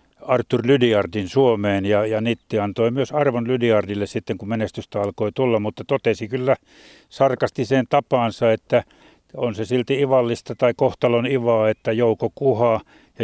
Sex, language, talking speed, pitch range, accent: male, Finnish, 150 wpm, 105-120 Hz, native